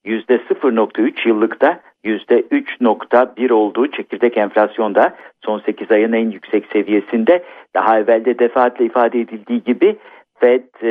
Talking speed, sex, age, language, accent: 110 wpm, male, 50-69, Turkish, native